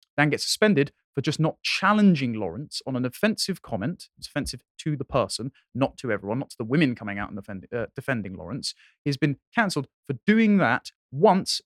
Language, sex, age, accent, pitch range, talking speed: English, male, 30-49, British, 120-180 Hz, 195 wpm